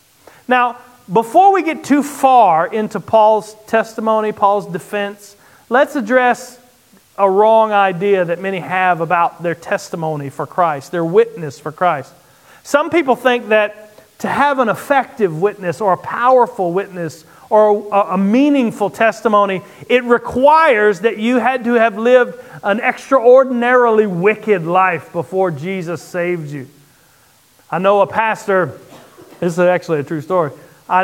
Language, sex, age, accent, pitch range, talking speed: English, male, 40-59, American, 170-215 Hz, 140 wpm